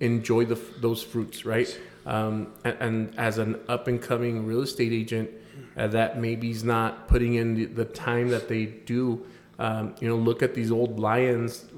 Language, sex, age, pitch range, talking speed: English, male, 30-49, 115-125 Hz, 175 wpm